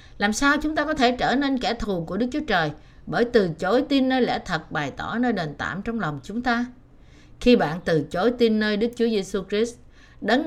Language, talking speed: Vietnamese, 235 wpm